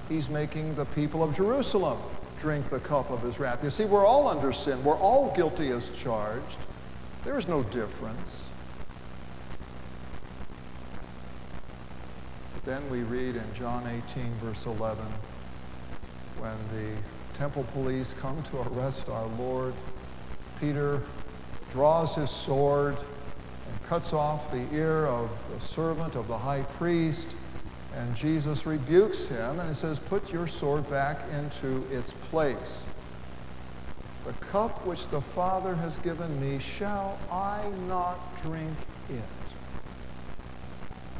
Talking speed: 125 wpm